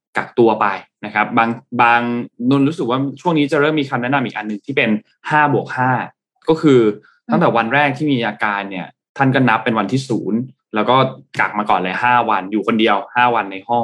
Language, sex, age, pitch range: Thai, male, 20-39, 110-140 Hz